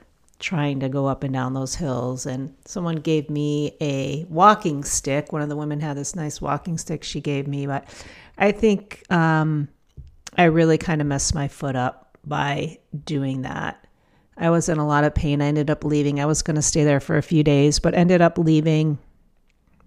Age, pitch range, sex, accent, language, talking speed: 40-59, 145-175 Hz, female, American, English, 200 wpm